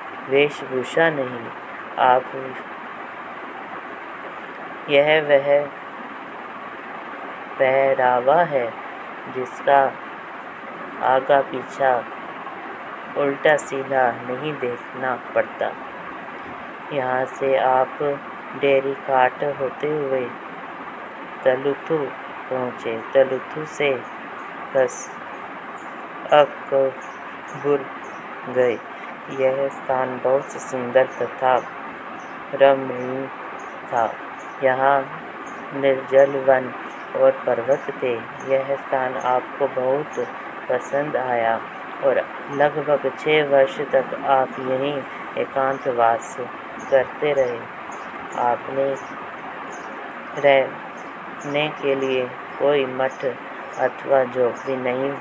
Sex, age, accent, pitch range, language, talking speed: female, 20-39, native, 130-140 Hz, Hindi, 75 wpm